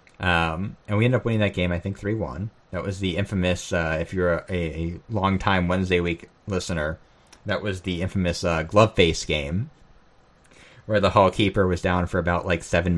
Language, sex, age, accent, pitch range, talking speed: English, male, 30-49, American, 90-105 Hz, 205 wpm